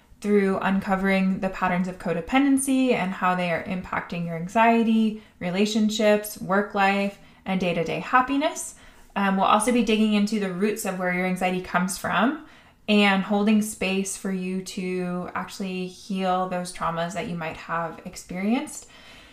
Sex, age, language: female, 20-39, English